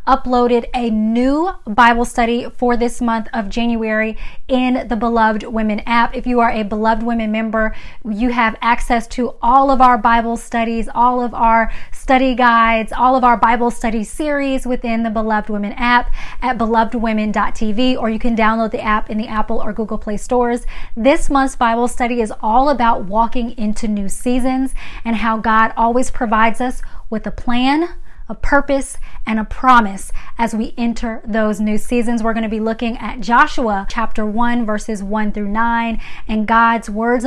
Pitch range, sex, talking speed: 220-245 Hz, female, 175 wpm